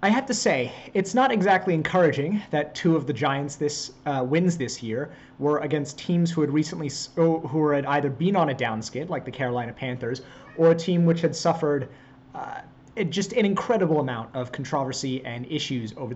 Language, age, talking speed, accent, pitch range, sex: English, 30-49, 190 wpm, American, 130-165 Hz, male